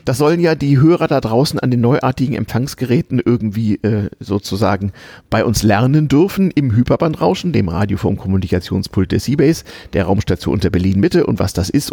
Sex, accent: male, German